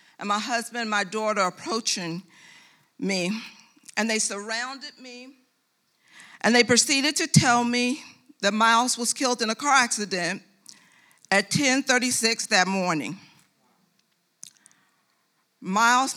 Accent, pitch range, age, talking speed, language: American, 195-240 Hz, 50-69, 115 wpm, English